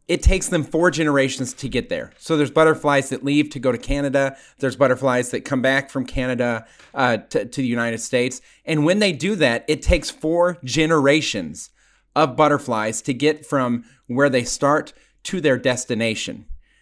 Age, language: 30-49, English